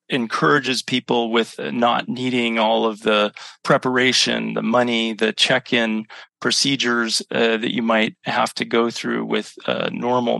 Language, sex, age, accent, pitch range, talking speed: English, male, 30-49, American, 115-130 Hz, 145 wpm